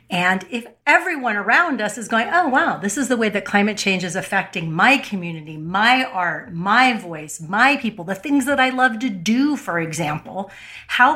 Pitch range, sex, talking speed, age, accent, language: 190-260 Hz, female, 195 wpm, 40-59, American, English